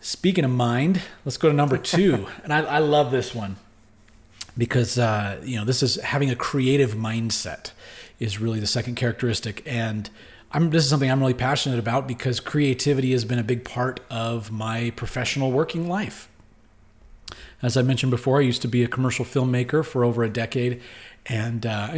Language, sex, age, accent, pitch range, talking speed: English, male, 30-49, American, 110-135 Hz, 190 wpm